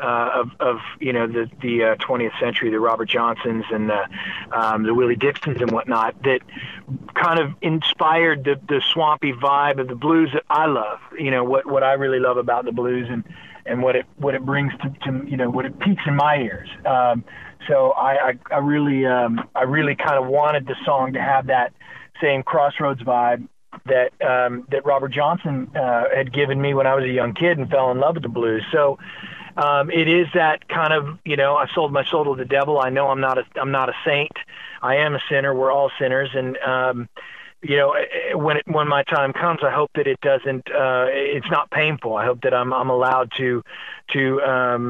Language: English